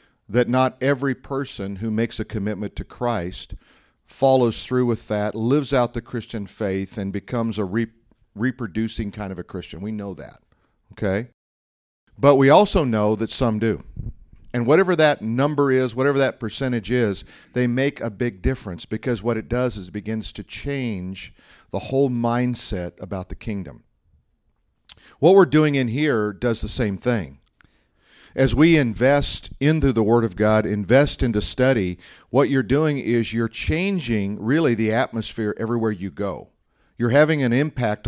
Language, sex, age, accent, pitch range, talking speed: English, male, 50-69, American, 105-130 Hz, 160 wpm